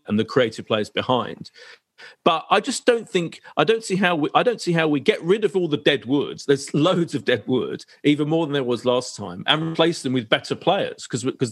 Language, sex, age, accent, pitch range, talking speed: English, male, 40-59, British, 135-195 Hz, 260 wpm